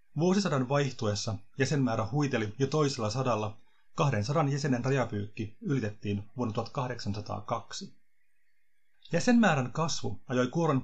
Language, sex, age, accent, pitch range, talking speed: Finnish, male, 30-49, native, 115-160 Hz, 95 wpm